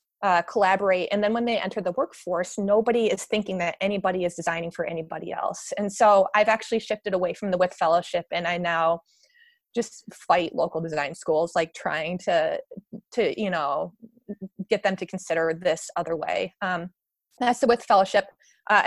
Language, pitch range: English, 180-220 Hz